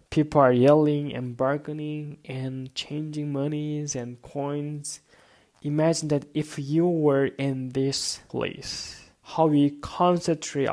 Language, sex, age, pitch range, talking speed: English, male, 20-39, 125-155 Hz, 115 wpm